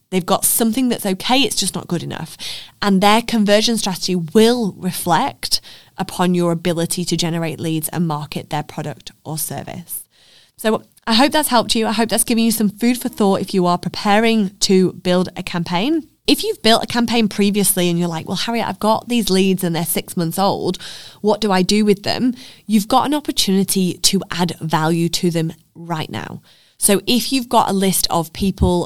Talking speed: 200 wpm